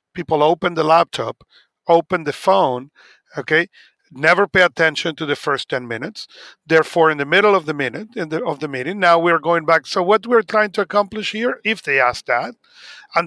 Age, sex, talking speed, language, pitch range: 40-59, male, 205 wpm, English, 150-185 Hz